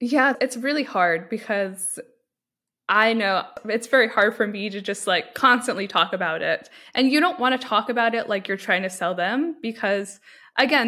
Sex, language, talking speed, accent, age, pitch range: female, English, 195 wpm, American, 10-29, 195-245 Hz